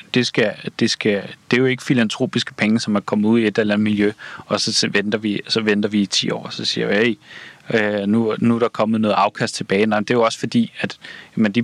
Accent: native